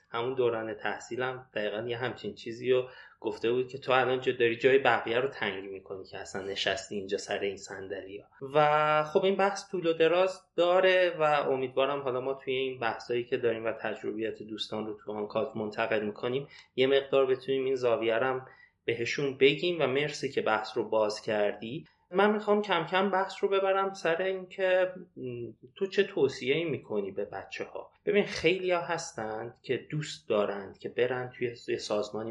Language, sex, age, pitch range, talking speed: Persian, male, 30-49, 115-185 Hz, 175 wpm